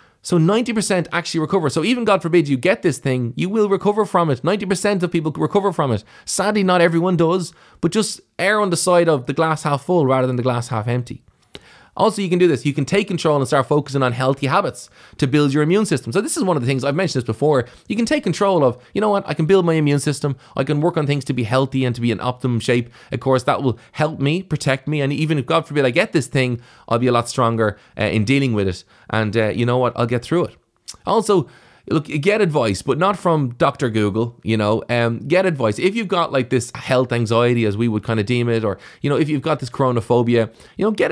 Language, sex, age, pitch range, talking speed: English, male, 20-39, 120-175 Hz, 260 wpm